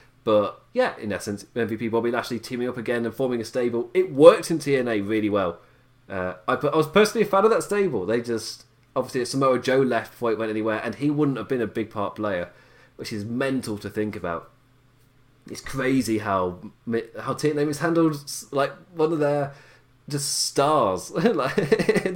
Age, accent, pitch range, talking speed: 20-39, British, 110-135 Hz, 190 wpm